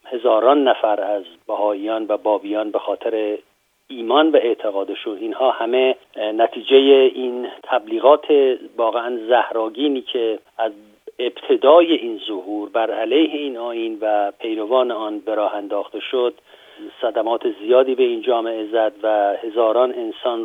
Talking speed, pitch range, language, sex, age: 125 wpm, 115-155 Hz, Persian, male, 50-69